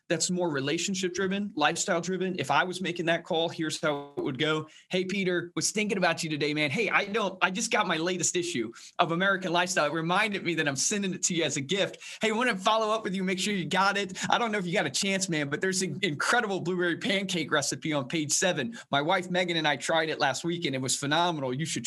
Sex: male